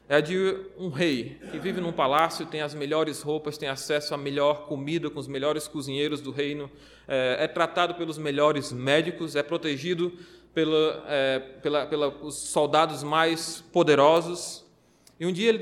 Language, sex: Portuguese, male